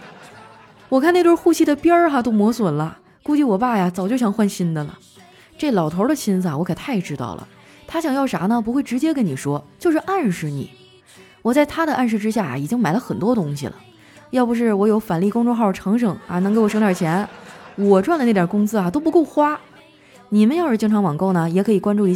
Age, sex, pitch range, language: 20-39, female, 185-245 Hz, Chinese